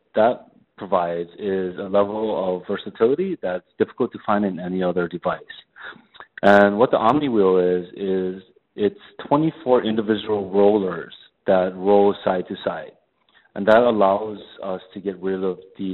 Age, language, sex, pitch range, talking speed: 30-49, English, male, 90-105 Hz, 145 wpm